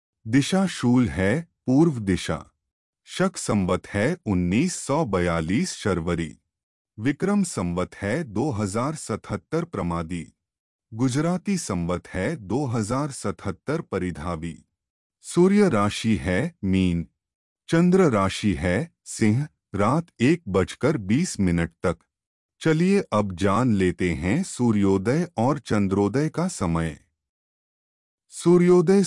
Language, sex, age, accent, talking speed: Hindi, male, 30-49, native, 95 wpm